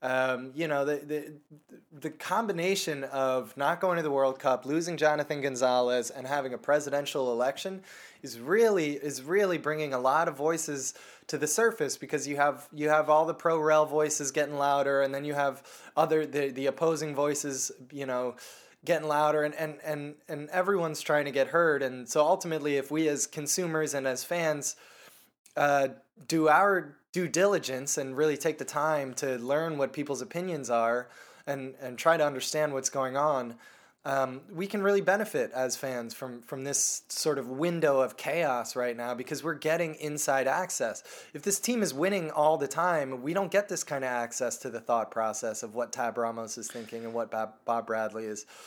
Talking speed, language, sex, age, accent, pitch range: 190 wpm, English, male, 20-39, American, 130-160 Hz